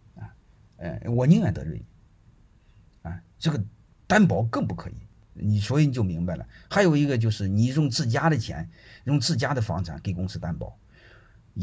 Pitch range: 95-125 Hz